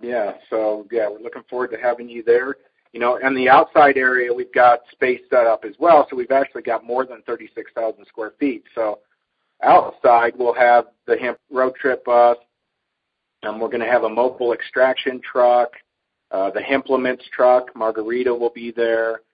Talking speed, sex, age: 180 wpm, male, 50-69